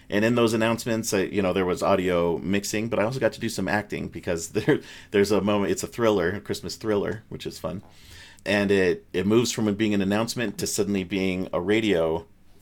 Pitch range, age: 90-105 Hz, 40-59